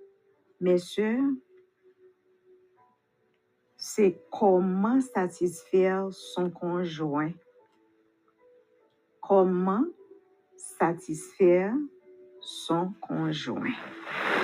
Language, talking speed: English, 40 wpm